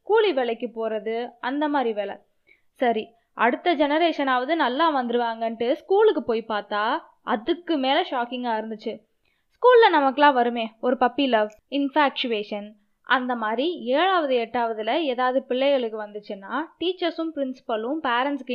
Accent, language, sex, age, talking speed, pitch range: native, Tamil, female, 20-39, 115 wpm, 230-300 Hz